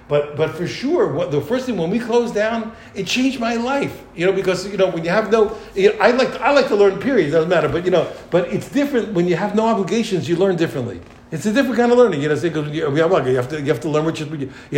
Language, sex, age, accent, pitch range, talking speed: English, male, 60-79, American, 165-220 Hz, 285 wpm